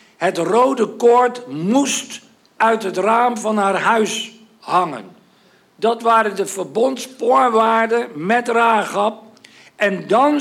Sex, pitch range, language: male, 210-250 Hz, Dutch